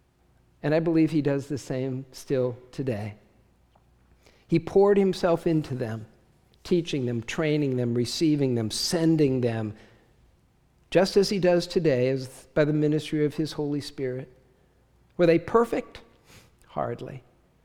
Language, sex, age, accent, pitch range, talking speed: English, male, 50-69, American, 130-180 Hz, 135 wpm